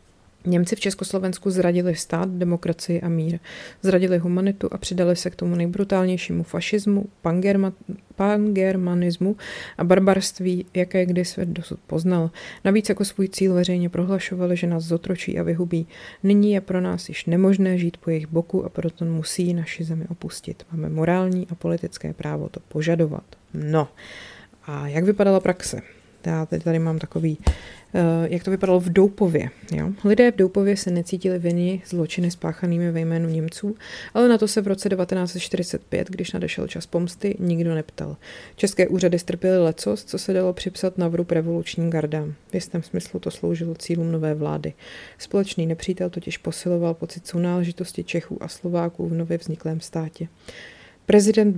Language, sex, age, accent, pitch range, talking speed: Czech, female, 30-49, native, 165-190 Hz, 160 wpm